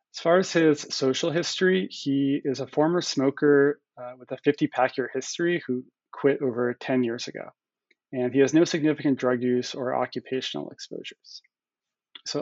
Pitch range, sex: 125-150 Hz, male